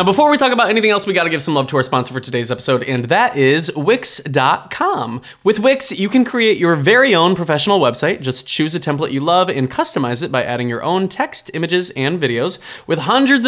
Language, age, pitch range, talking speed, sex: English, 20-39, 135-210 Hz, 225 wpm, male